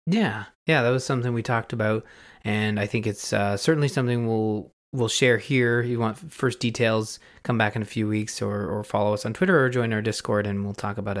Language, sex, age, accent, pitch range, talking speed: English, male, 20-39, American, 110-135 Hz, 235 wpm